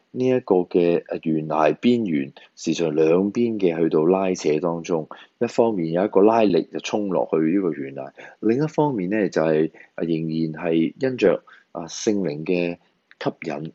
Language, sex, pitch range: Chinese, male, 80-115 Hz